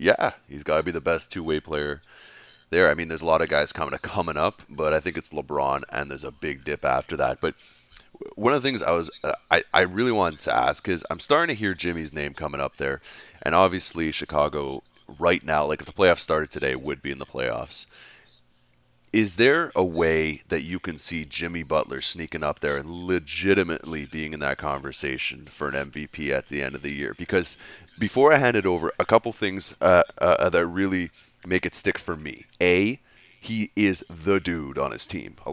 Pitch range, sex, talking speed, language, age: 75-90 Hz, male, 215 wpm, English, 30-49